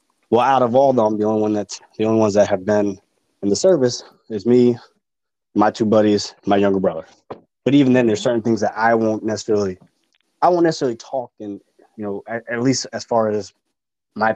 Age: 20-39